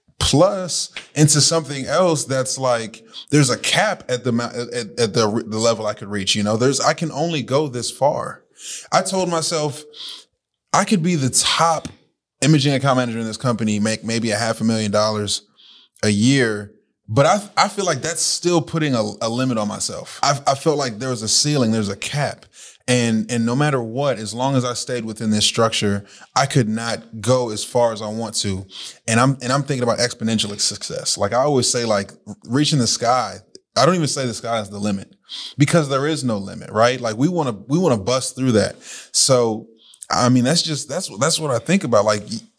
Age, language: 20-39, English